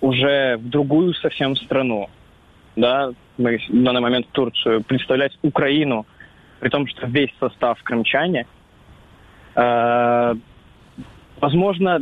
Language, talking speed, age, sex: Russian, 100 wpm, 20-39, male